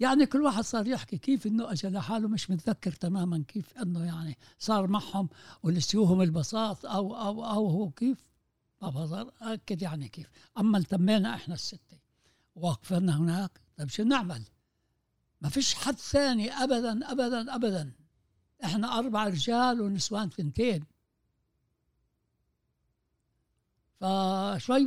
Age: 60-79